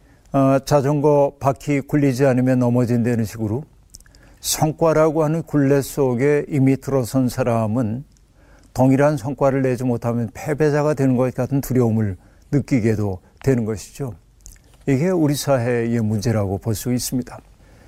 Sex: male